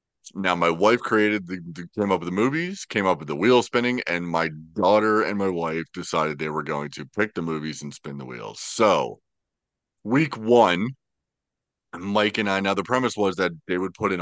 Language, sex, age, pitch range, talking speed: English, male, 30-49, 80-105 Hz, 210 wpm